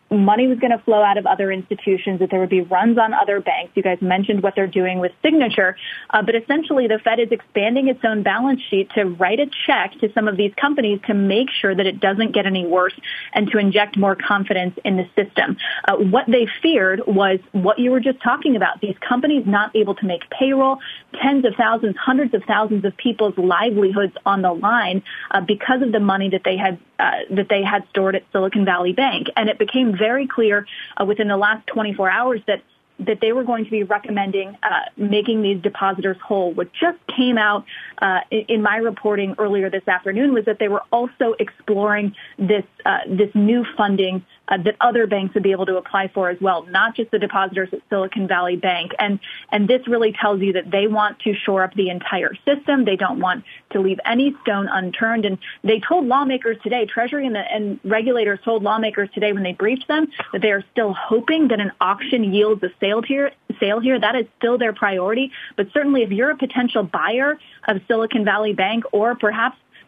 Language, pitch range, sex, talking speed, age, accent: English, 195-240 Hz, female, 210 wpm, 30-49, American